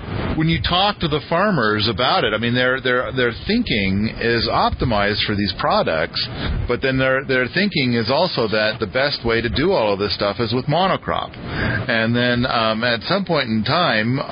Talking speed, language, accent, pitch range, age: 185 wpm, English, American, 110-155 Hz, 40-59